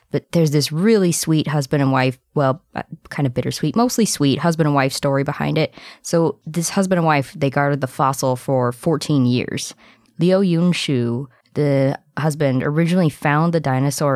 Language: English